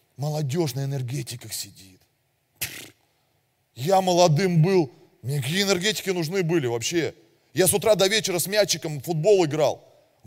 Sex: male